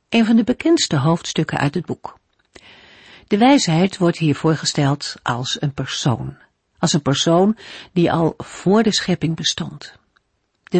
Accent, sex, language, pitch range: Dutch, female, Dutch, 150-195 Hz